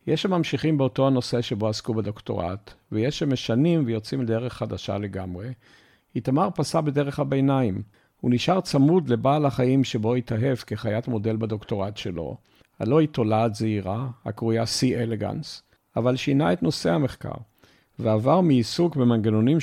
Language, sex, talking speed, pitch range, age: Hebrew, male, 130 wpm, 110-140 Hz, 50-69